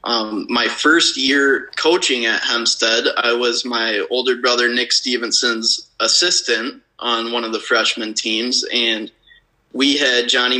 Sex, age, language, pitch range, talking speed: male, 20-39, English, 115-130 Hz, 140 wpm